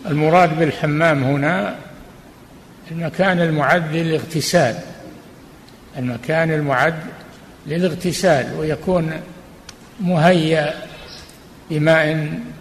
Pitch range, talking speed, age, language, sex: 145-180 Hz, 55 wpm, 60-79, Arabic, male